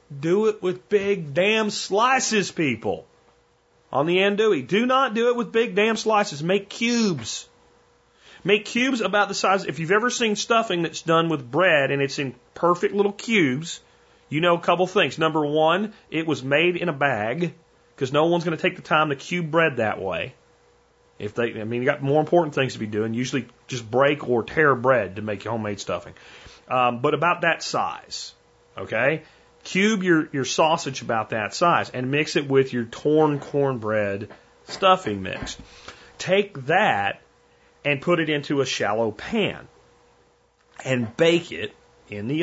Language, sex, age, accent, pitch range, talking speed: English, male, 40-59, American, 135-205 Hz, 175 wpm